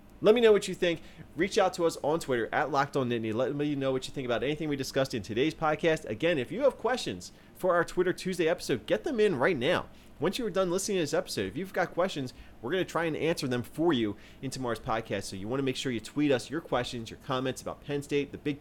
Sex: male